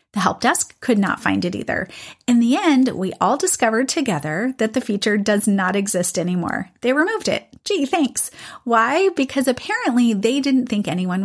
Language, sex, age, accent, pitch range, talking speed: English, female, 30-49, American, 195-265 Hz, 180 wpm